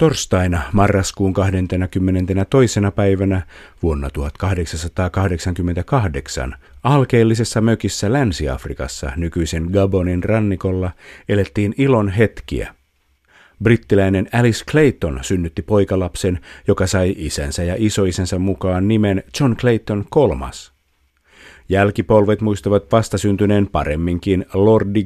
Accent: native